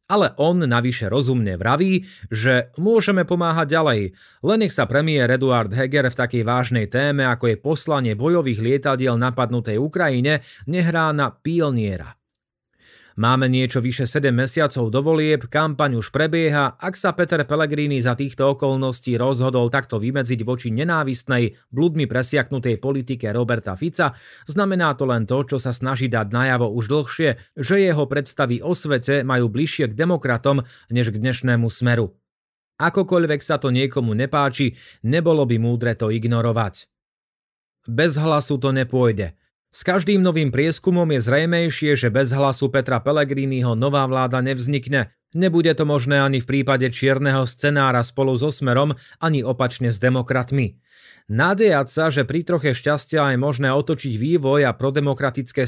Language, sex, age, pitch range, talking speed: Slovak, male, 30-49, 125-150 Hz, 145 wpm